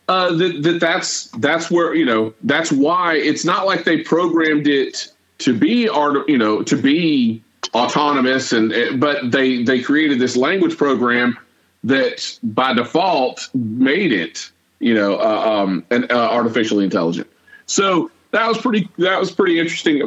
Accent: American